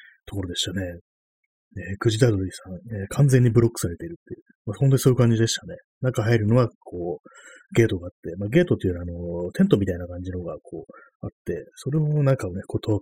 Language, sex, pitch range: Japanese, male, 90-125 Hz